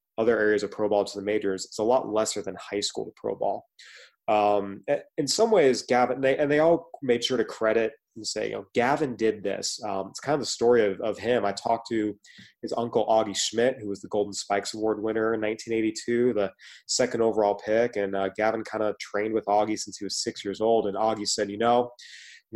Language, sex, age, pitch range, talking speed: English, male, 20-39, 105-120 Hz, 235 wpm